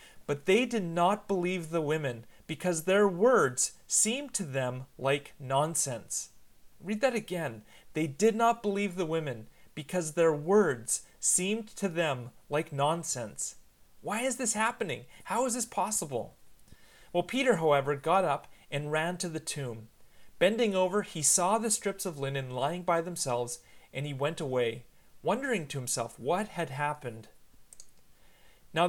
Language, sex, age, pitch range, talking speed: English, male, 30-49, 135-195 Hz, 150 wpm